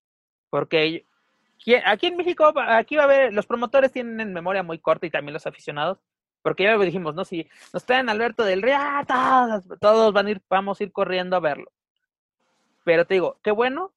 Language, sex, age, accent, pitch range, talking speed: Spanish, male, 30-49, Mexican, 180-235 Hz, 200 wpm